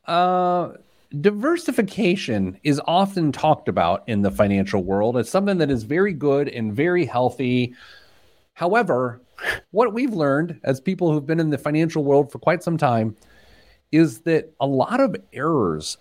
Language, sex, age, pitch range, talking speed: English, male, 40-59, 115-165 Hz, 155 wpm